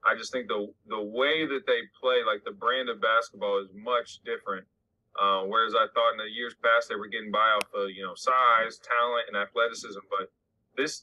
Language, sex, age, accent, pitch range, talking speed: English, male, 20-39, American, 105-145 Hz, 210 wpm